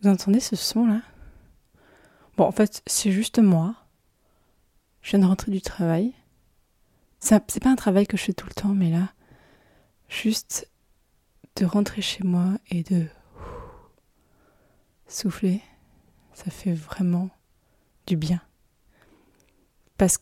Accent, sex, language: French, female, French